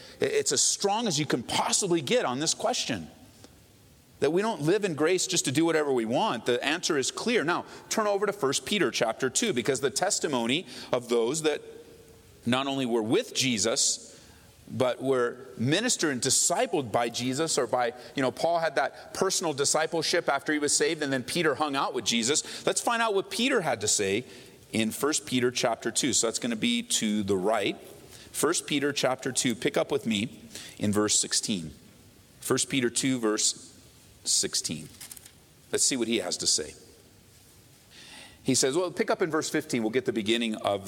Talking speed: 190 wpm